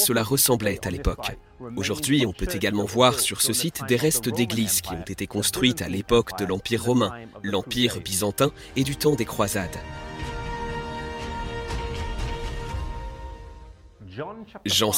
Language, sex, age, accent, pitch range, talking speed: French, male, 40-59, French, 100-130 Hz, 130 wpm